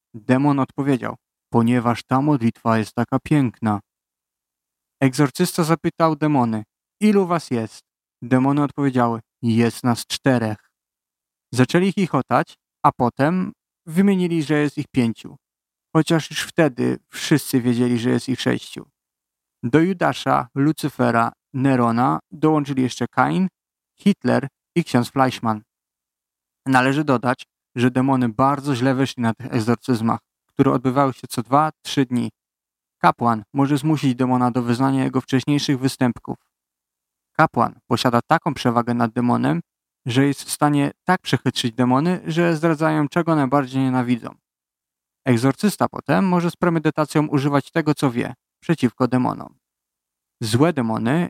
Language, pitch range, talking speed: Polish, 115-150 Hz, 125 wpm